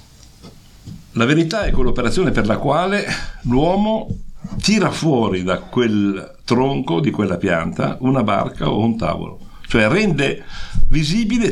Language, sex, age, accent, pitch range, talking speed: English, male, 60-79, Italian, 100-155 Hz, 125 wpm